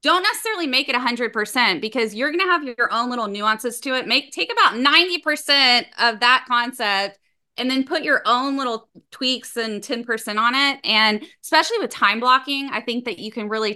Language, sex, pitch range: English, female, 215-270 Hz